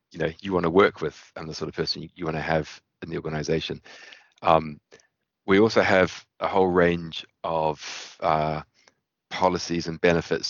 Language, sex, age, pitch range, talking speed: English, male, 30-49, 75-85 Hz, 185 wpm